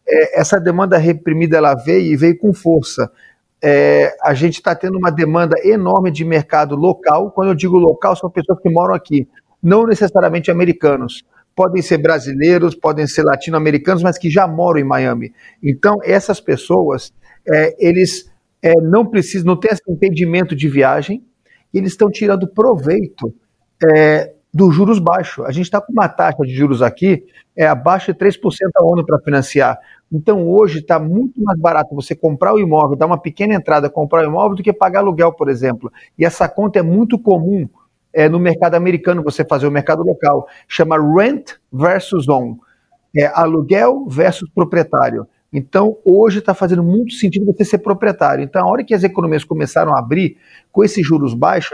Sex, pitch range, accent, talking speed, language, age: male, 155-195 Hz, Brazilian, 175 wpm, Portuguese, 40-59